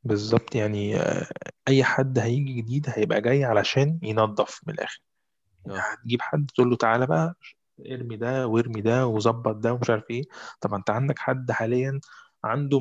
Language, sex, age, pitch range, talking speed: Arabic, male, 20-39, 105-125 Hz, 165 wpm